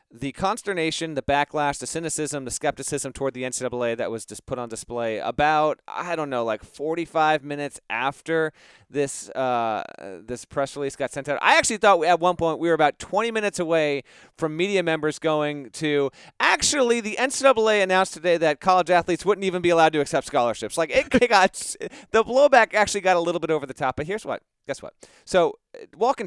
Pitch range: 125-170 Hz